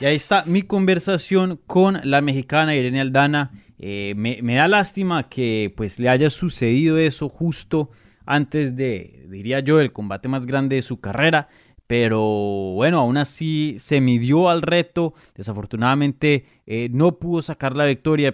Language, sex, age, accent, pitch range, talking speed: Spanish, male, 20-39, Colombian, 115-145 Hz, 155 wpm